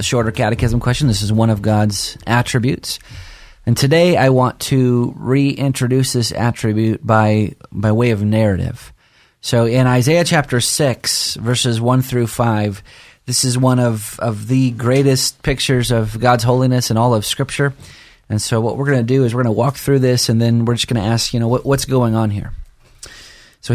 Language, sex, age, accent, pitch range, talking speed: English, male, 30-49, American, 115-140 Hz, 190 wpm